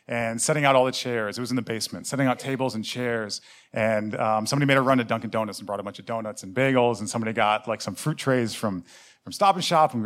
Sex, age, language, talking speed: male, 30-49, English, 280 wpm